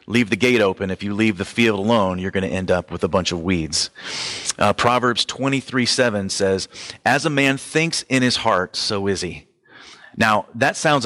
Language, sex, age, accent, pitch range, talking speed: English, male, 30-49, American, 100-135 Hz, 200 wpm